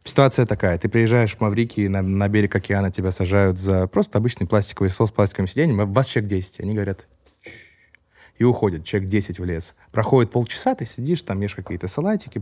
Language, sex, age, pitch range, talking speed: Russian, male, 20-39, 100-125 Hz, 200 wpm